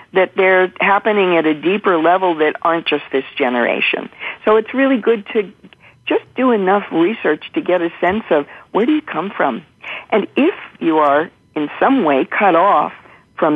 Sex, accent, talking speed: female, American, 180 wpm